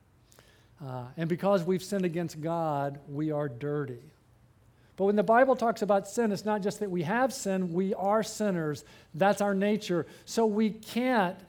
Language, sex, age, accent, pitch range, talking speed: English, male, 50-69, American, 150-200 Hz, 170 wpm